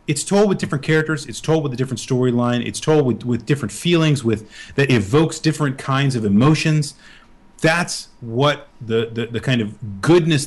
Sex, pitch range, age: male, 115-175 Hz, 30-49